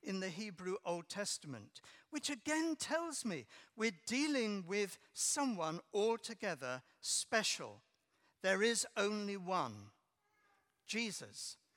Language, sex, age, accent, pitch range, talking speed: English, male, 60-79, British, 140-200 Hz, 100 wpm